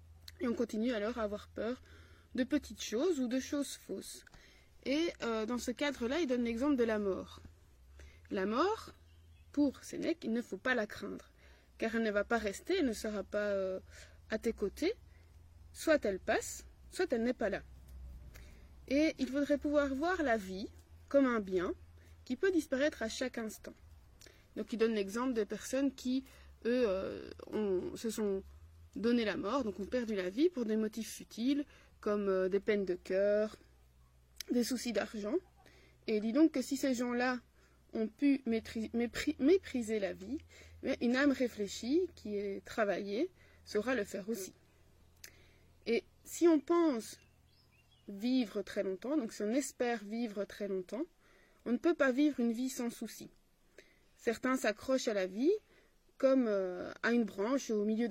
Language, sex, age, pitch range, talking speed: French, female, 20-39, 195-265 Hz, 165 wpm